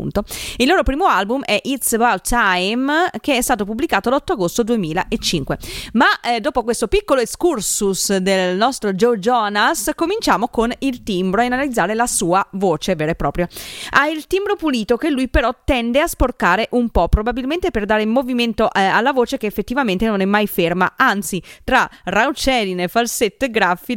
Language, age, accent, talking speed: Italian, 30-49, native, 170 wpm